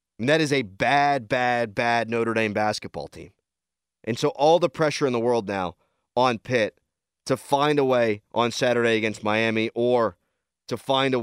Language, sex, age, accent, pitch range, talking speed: English, male, 30-49, American, 90-140 Hz, 180 wpm